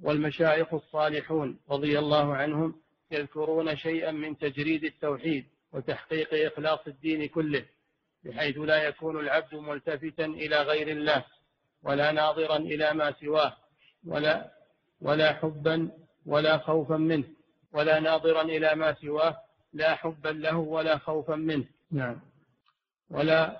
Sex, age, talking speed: male, 50-69, 115 wpm